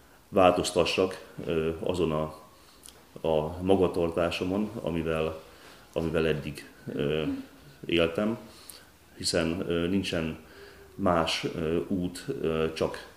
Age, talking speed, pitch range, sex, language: 30-49, 65 wpm, 80-100 Hz, male, Hungarian